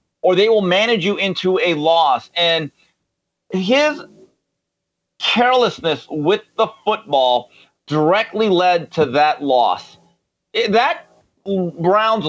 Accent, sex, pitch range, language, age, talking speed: American, male, 150-195 Hz, English, 40-59, 105 wpm